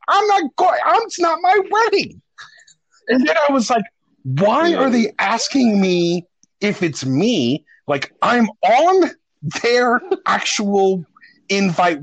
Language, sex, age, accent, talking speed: English, male, 40-59, American, 130 wpm